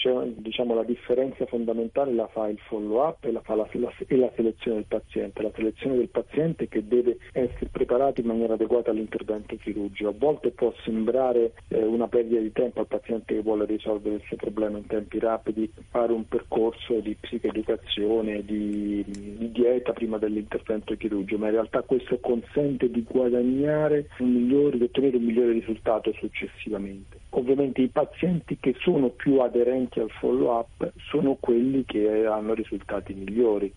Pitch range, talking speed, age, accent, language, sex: 110-125 Hz, 165 wpm, 40-59, native, Italian, male